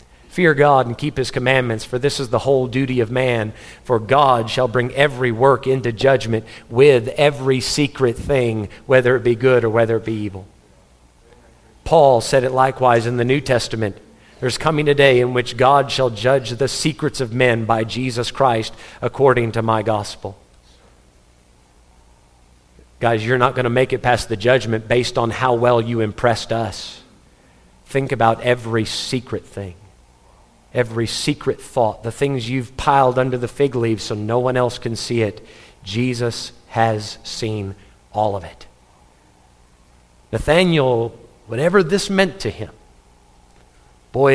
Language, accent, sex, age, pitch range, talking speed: English, American, male, 40-59, 105-130 Hz, 155 wpm